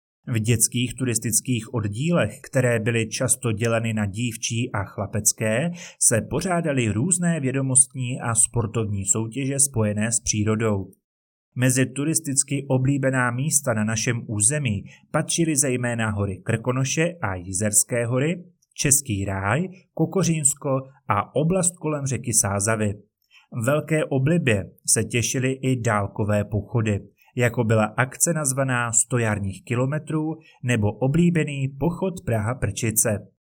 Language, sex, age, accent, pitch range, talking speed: Czech, male, 30-49, native, 110-145 Hz, 110 wpm